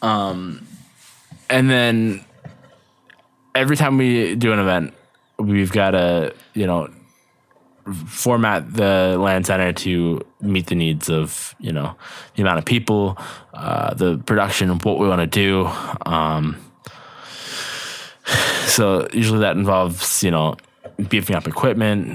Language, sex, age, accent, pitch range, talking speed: English, male, 20-39, American, 85-105 Hz, 130 wpm